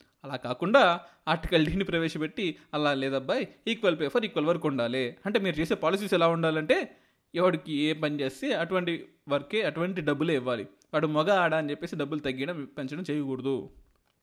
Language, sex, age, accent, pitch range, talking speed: Telugu, male, 20-39, native, 140-180 Hz, 150 wpm